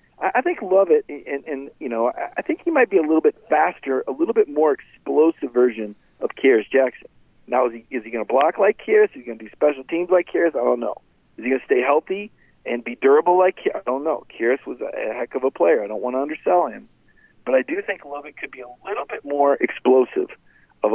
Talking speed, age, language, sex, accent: 250 wpm, 40-59, English, male, American